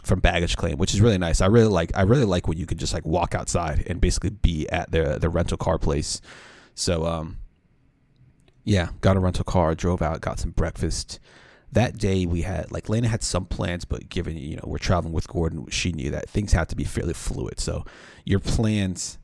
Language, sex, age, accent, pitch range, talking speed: English, male, 30-49, American, 80-95 Hz, 220 wpm